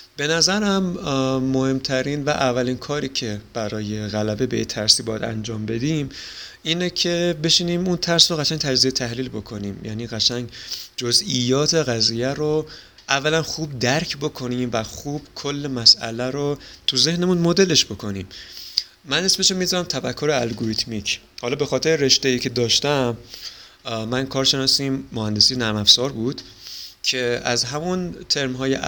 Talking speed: 130 wpm